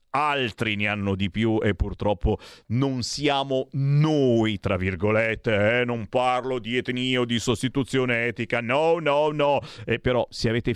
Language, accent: Italian, native